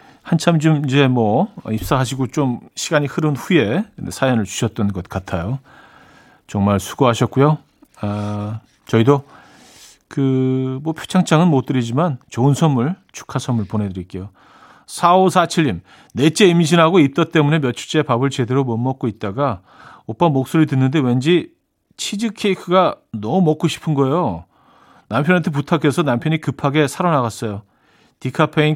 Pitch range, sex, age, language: 115-160 Hz, male, 40-59, Korean